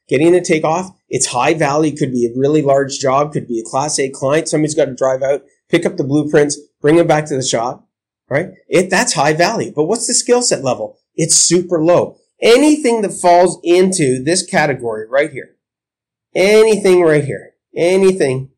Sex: male